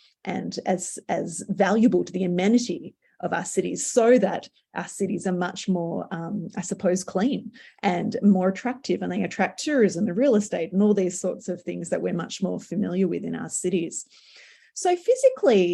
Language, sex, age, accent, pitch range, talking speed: English, female, 30-49, Australian, 185-235 Hz, 185 wpm